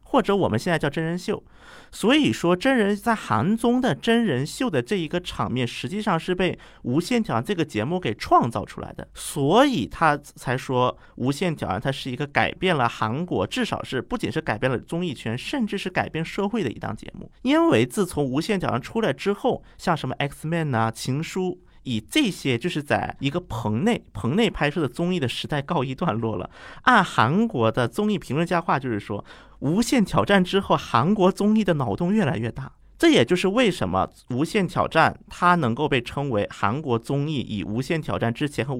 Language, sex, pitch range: Chinese, male, 125-200 Hz